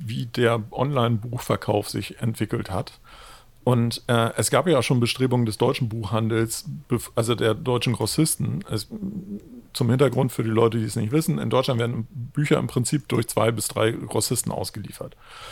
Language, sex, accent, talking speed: German, male, German, 165 wpm